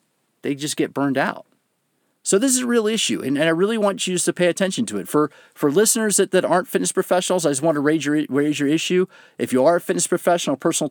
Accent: American